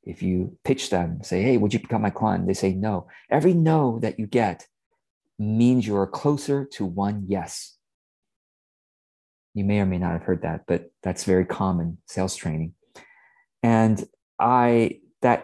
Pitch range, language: 95-130 Hz, English